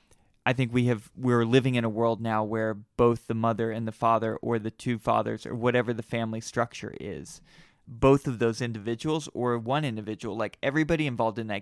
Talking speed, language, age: 200 wpm, English, 20-39